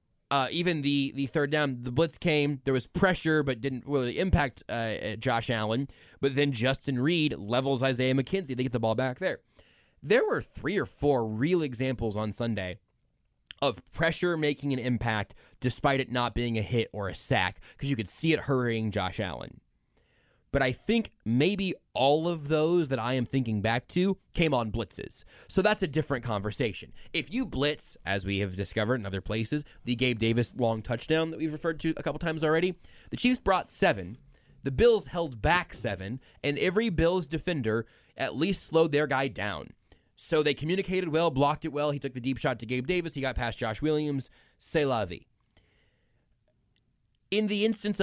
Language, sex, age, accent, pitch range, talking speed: English, male, 20-39, American, 115-160 Hz, 190 wpm